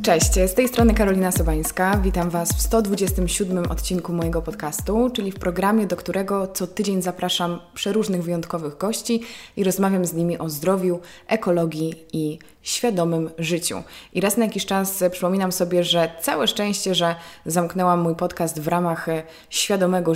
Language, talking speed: Polish, 150 wpm